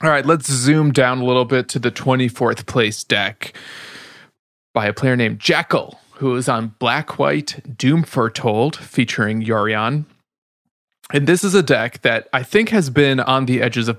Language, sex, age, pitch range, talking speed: English, male, 20-39, 115-145 Hz, 175 wpm